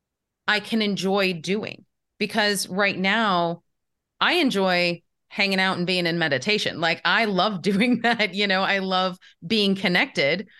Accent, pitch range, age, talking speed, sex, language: American, 170-215 Hz, 30-49, 145 wpm, female, English